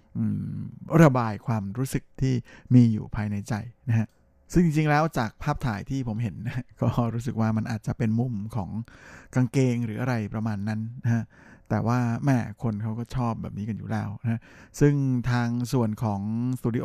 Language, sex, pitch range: Thai, male, 110-130 Hz